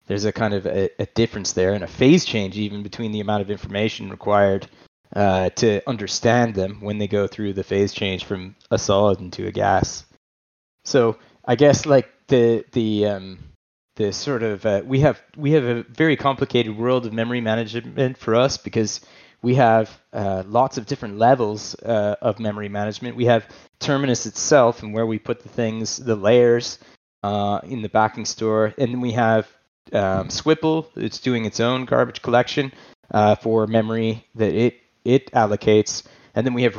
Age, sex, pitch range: 20-39, male, 100-125 Hz